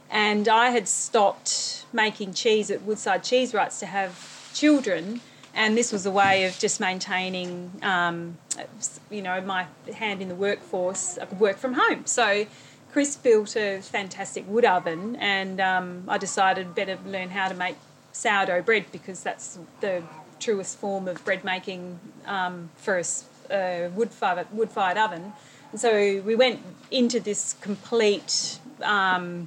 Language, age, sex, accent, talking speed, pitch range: English, 30-49, female, Australian, 155 wpm, 185-215 Hz